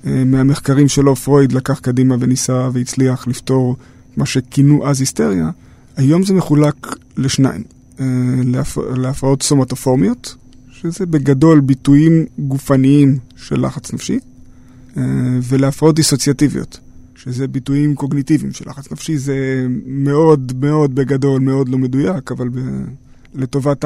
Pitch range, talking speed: 130-145 Hz, 110 wpm